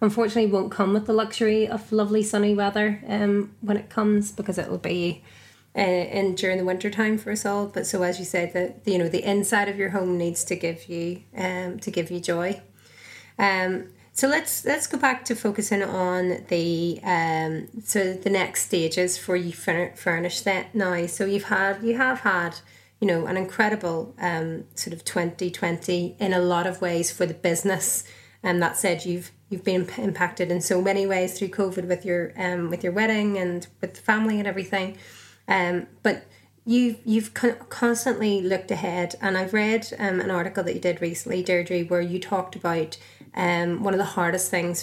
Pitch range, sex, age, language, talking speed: 175-200 Hz, female, 20-39, English, 200 wpm